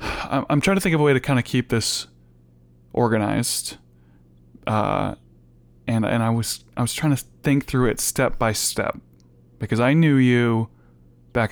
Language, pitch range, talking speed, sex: English, 95-120 Hz, 170 wpm, male